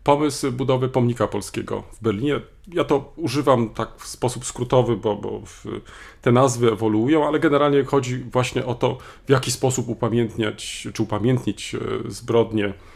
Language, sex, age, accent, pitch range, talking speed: Polish, male, 40-59, native, 105-130 Hz, 145 wpm